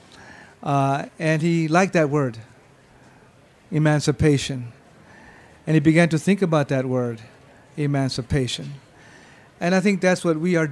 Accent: American